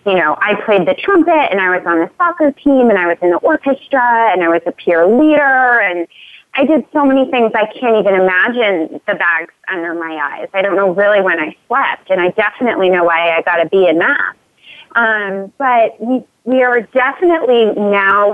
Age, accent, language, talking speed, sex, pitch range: 30-49, American, English, 215 wpm, female, 185-245 Hz